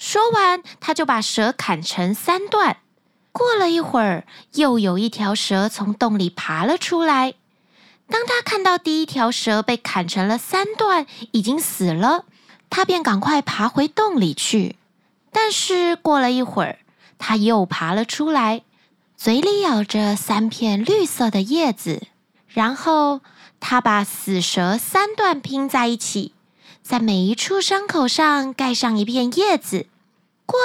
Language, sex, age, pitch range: Chinese, female, 20-39, 215-330 Hz